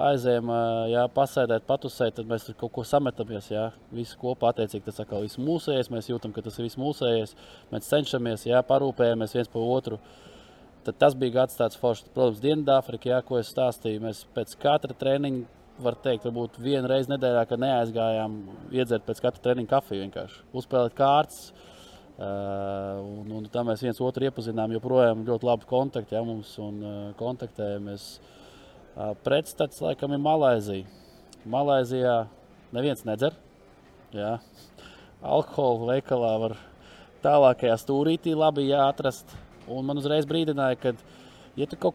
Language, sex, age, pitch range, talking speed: English, male, 20-39, 110-135 Hz, 135 wpm